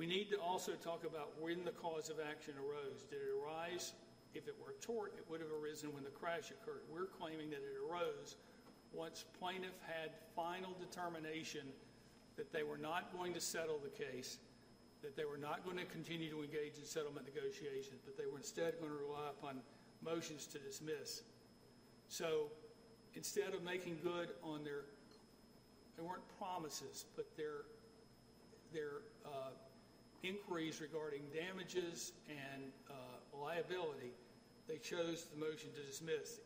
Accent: American